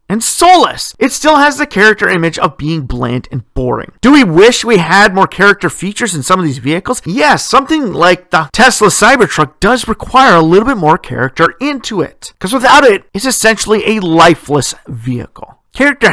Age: 40-59